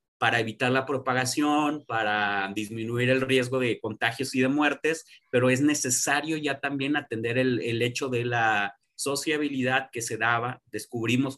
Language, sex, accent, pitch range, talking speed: Spanish, male, Mexican, 115-135 Hz, 155 wpm